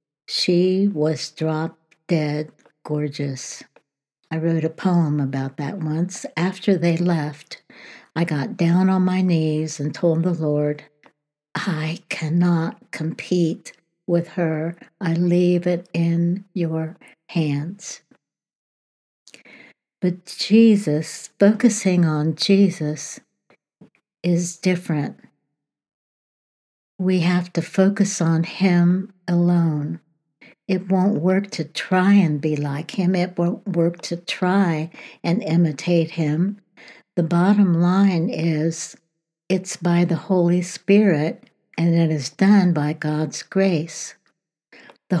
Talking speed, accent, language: 110 wpm, American, English